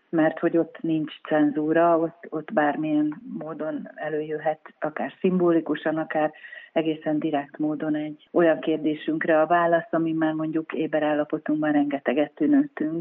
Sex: female